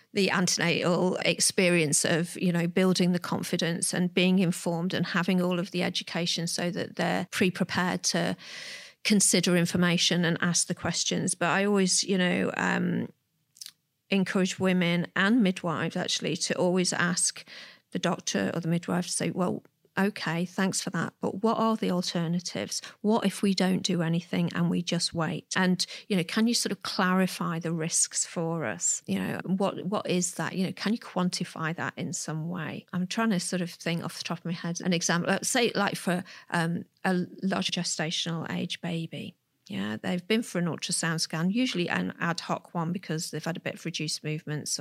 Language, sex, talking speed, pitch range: English, female, 185 wpm, 170-190 Hz